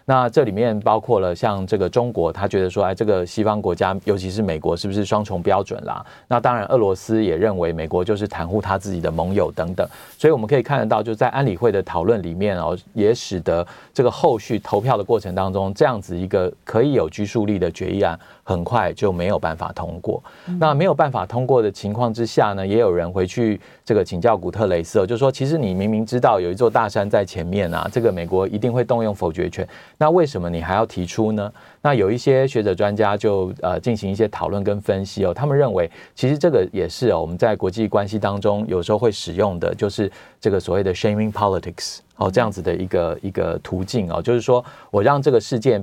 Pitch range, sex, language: 95-115 Hz, male, Chinese